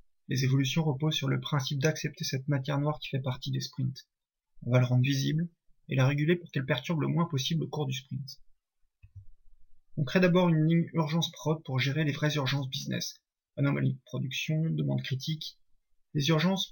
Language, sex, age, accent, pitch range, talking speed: French, male, 30-49, French, 135-160 Hz, 190 wpm